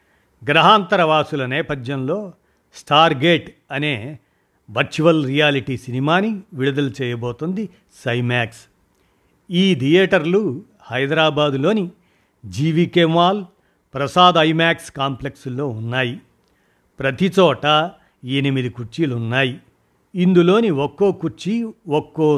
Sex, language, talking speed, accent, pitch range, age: male, Telugu, 70 wpm, native, 130-170 Hz, 50-69